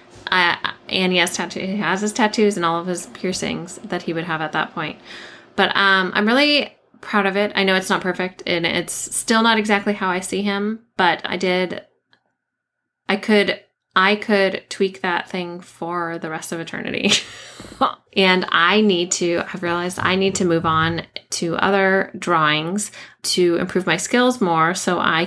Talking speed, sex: 185 wpm, female